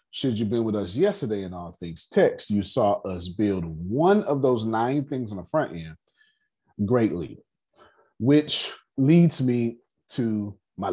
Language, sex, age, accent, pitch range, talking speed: English, male, 30-49, American, 85-130 Hz, 160 wpm